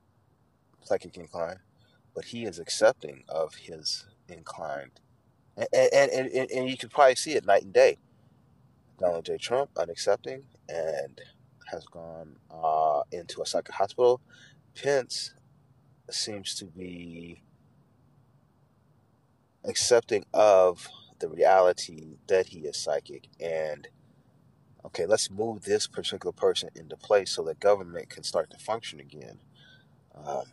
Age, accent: 30-49, American